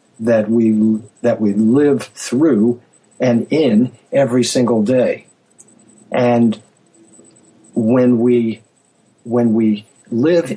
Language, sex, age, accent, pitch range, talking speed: English, male, 50-69, American, 110-135 Hz, 95 wpm